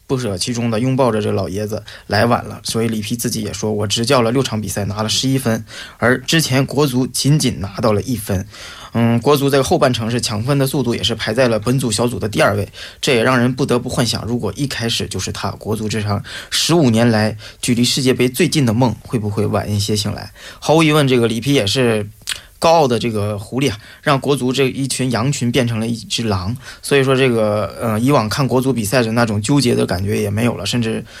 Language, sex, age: Korean, male, 20-39